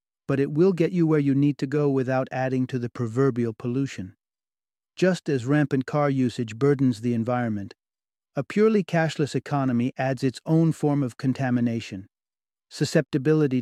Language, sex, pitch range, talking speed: English, male, 125-150 Hz, 155 wpm